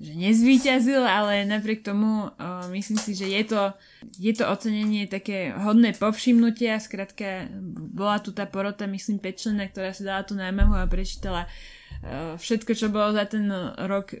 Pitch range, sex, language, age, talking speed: 195-225 Hz, female, Slovak, 20-39, 160 wpm